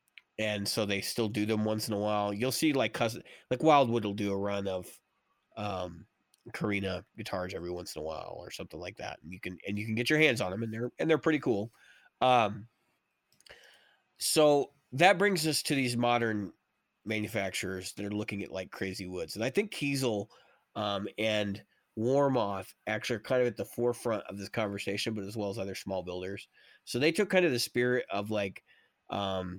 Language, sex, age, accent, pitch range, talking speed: English, male, 30-49, American, 95-115 Hz, 205 wpm